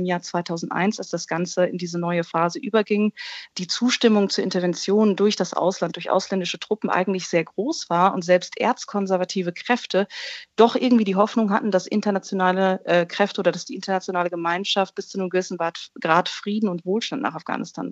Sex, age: female, 40-59